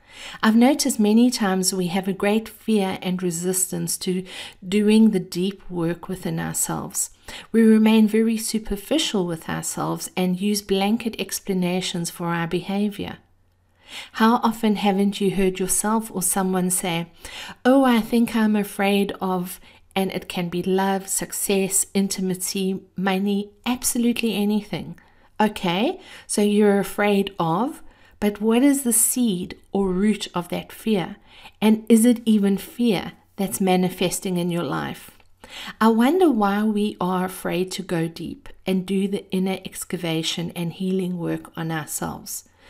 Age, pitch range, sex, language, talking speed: 50-69, 185-220 Hz, female, English, 140 wpm